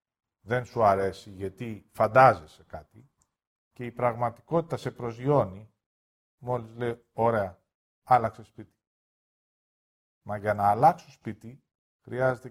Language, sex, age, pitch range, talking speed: Greek, male, 50-69, 100-135 Hz, 105 wpm